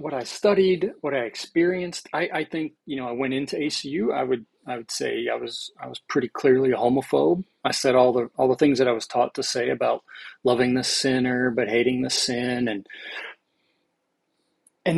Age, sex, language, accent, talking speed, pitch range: 30-49, male, English, American, 205 wpm, 125-165 Hz